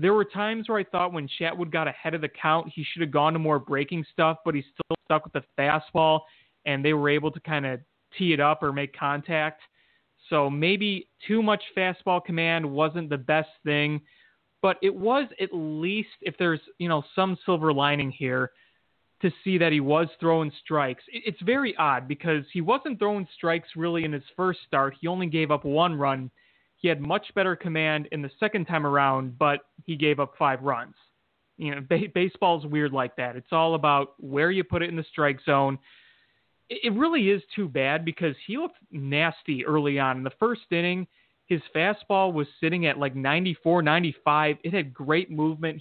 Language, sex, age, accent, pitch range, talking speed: English, male, 30-49, American, 145-180 Hz, 200 wpm